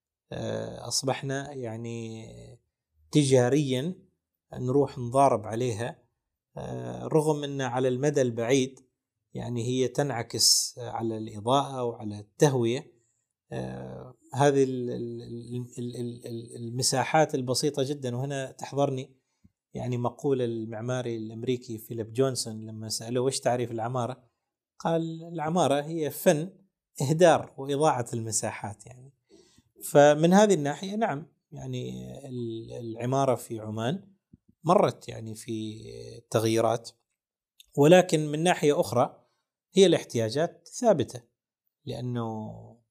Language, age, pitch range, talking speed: Arabic, 30-49, 115-145 Hz, 90 wpm